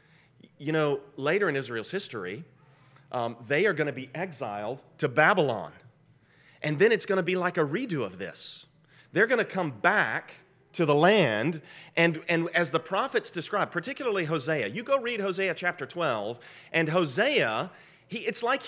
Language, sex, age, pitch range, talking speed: English, male, 30-49, 155-205 Hz, 170 wpm